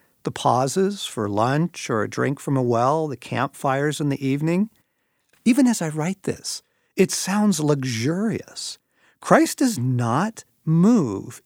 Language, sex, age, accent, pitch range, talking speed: English, male, 50-69, American, 130-200 Hz, 140 wpm